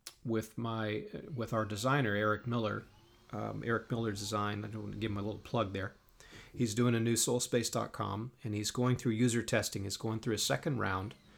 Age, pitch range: 40-59, 105-125 Hz